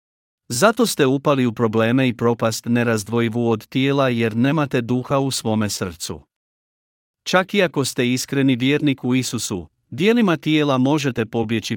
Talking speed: 145 wpm